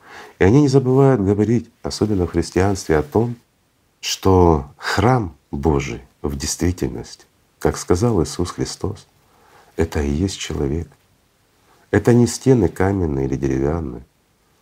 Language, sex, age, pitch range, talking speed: Russian, male, 50-69, 70-95 Hz, 120 wpm